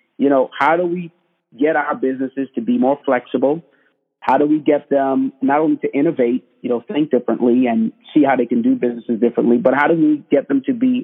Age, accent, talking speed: 40-59, American, 225 wpm